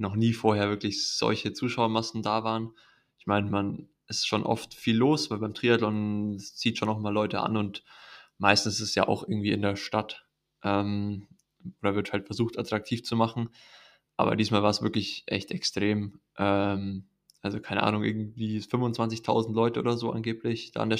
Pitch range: 100-110 Hz